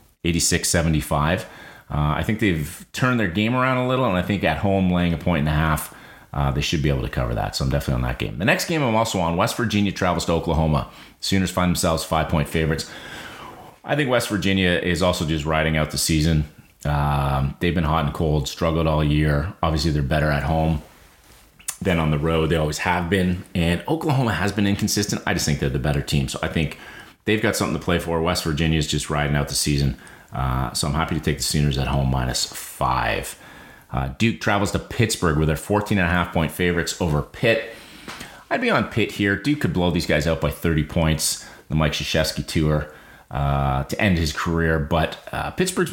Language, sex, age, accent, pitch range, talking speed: English, male, 30-49, American, 75-95 Hz, 215 wpm